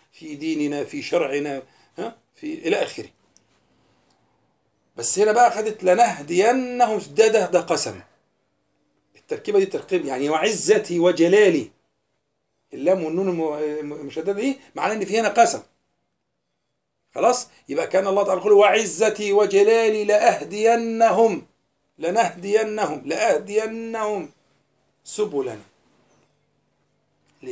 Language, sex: Arabic, male